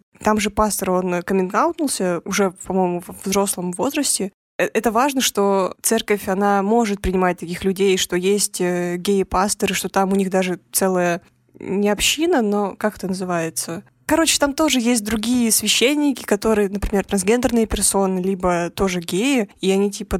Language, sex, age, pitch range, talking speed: Russian, female, 20-39, 190-225 Hz, 150 wpm